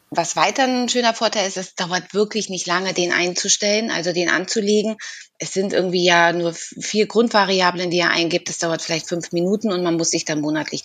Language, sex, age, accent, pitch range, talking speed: German, female, 20-39, German, 175-210 Hz, 205 wpm